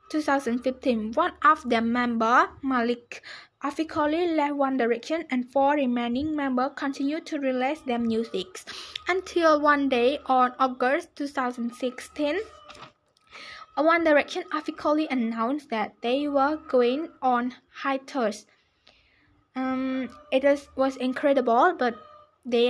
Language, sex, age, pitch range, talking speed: English, female, 10-29, 245-305 Hz, 110 wpm